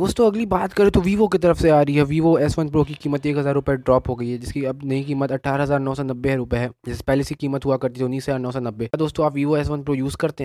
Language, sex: Hindi, male